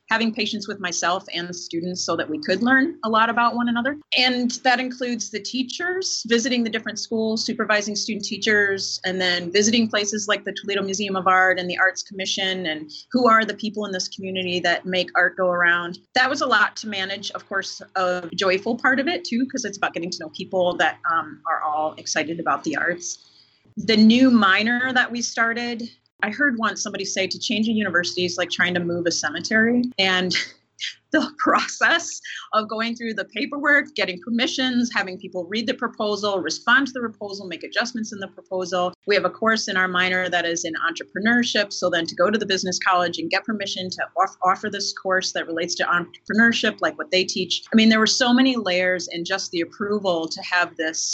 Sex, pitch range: female, 180-225 Hz